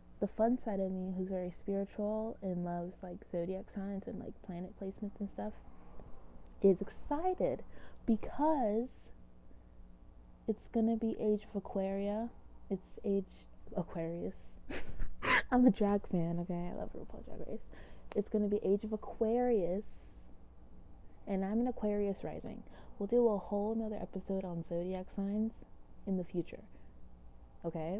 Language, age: English, 20-39